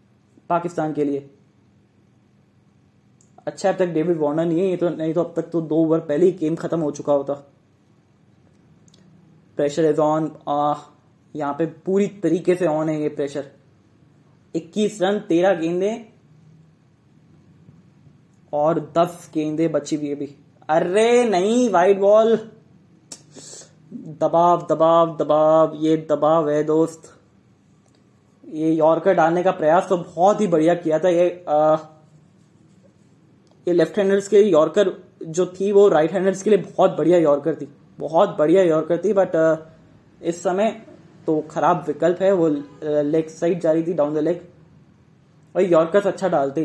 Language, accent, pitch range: English, Indian, 155-180 Hz